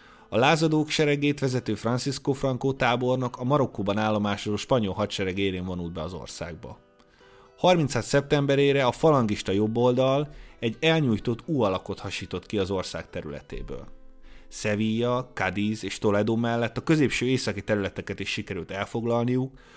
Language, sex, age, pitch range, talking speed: Hungarian, male, 30-49, 100-130 Hz, 130 wpm